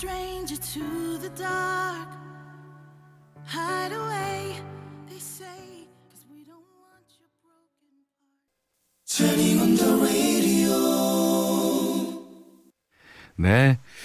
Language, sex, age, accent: Korean, male, 30-49, native